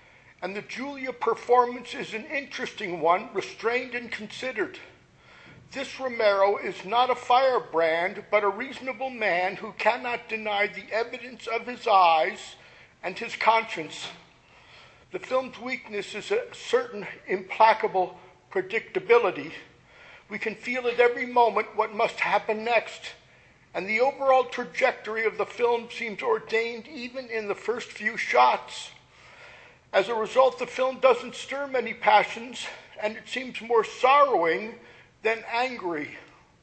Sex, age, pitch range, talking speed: male, 50-69, 205-250 Hz, 135 wpm